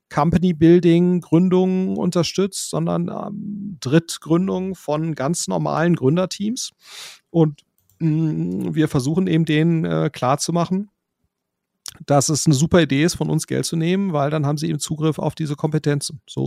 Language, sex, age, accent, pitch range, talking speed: German, male, 40-59, German, 130-170 Hz, 135 wpm